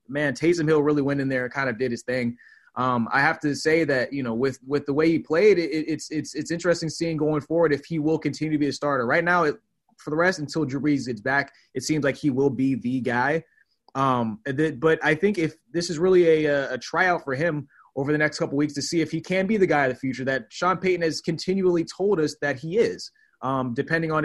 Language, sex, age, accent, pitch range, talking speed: English, male, 20-39, American, 135-170 Hz, 260 wpm